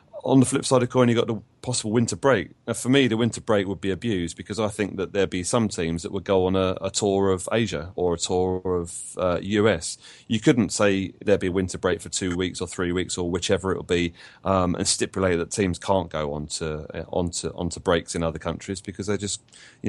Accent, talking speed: British, 255 wpm